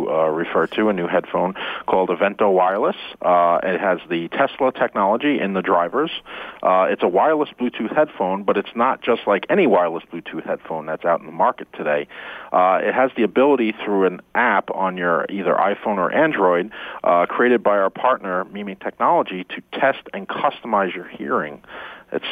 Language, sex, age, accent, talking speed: English, male, 40-59, American, 180 wpm